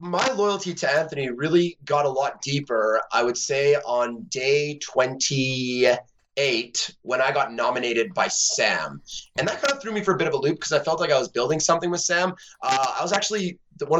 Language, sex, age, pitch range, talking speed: English, male, 30-49, 120-165 Hz, 205 wpm